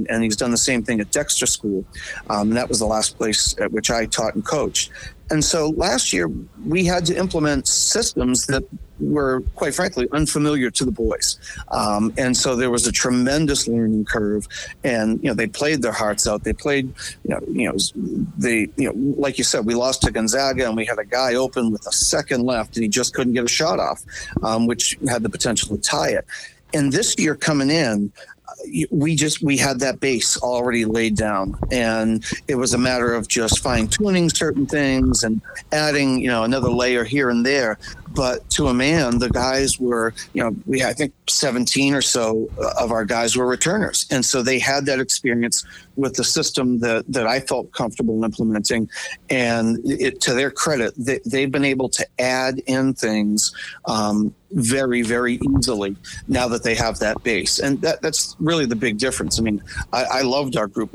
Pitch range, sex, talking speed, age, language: 110-135 Hz, male, 195 wpm, 40-59, English